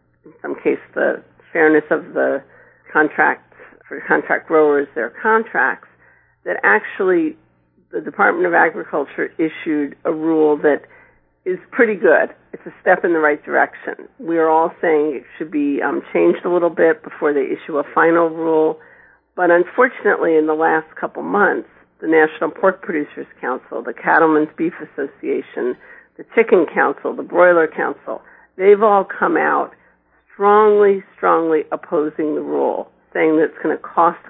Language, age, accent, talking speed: English, 50-69, American, 155 wpm